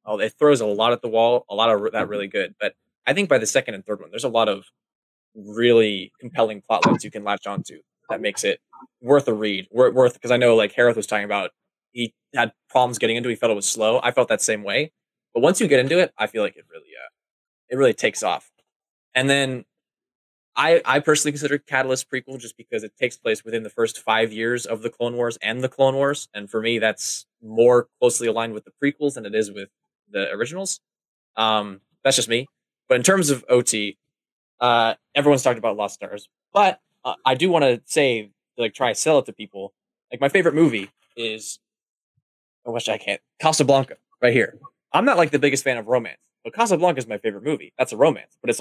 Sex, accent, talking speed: male, American, 225 wpm